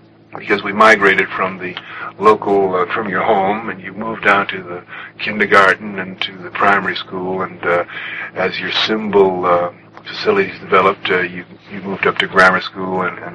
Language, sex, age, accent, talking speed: English, male, 50-69, American, 180 wpm